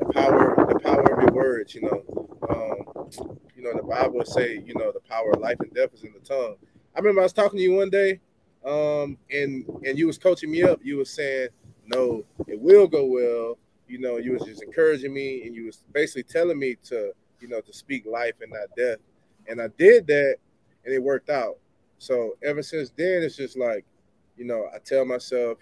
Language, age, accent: English, 20-39, American